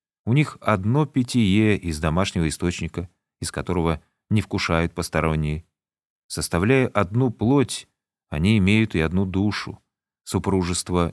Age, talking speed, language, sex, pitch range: 30-49, 115 wpm, Russian, male, 90-125 Hz